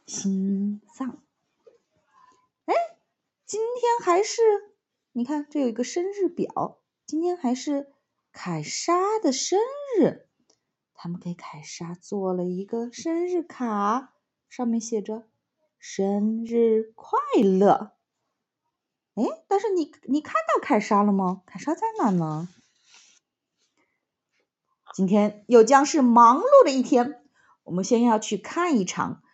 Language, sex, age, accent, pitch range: English, female, 30-49, Chinese, 185-310 Hz